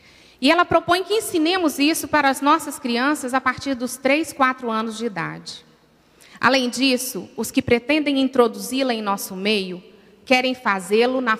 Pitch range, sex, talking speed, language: 210-280 Hz, female, 160 wpm, Portuguese